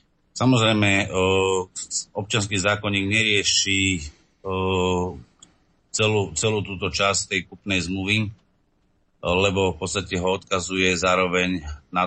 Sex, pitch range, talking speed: male, 85-95 Hz, 90 wpm